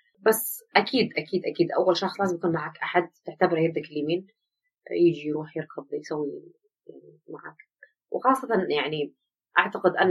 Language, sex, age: Arabic, female, 30-49